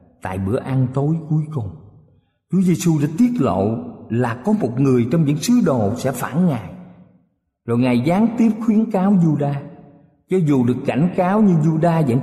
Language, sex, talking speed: Vietnamese, male, 180 wpm